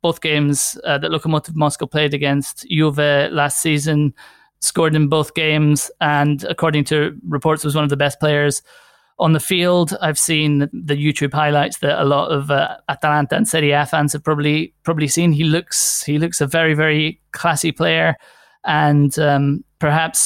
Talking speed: 175 wpm